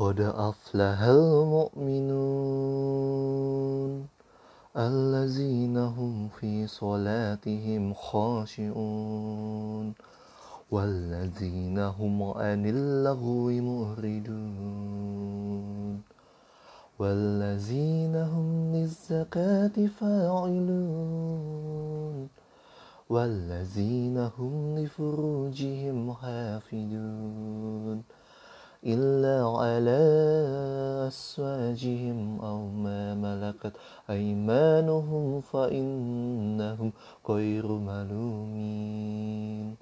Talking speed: 45 wpm